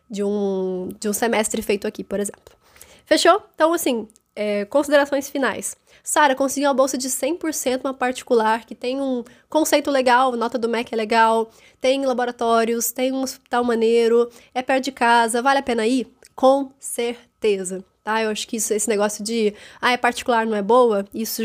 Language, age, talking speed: Portuguese, 10-29, 180 wpm